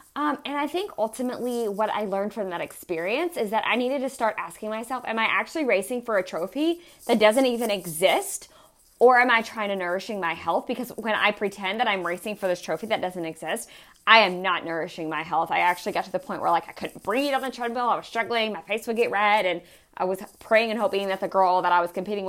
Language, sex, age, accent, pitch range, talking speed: English, female, 20-39, American, 195-250 Hz, 250 wpm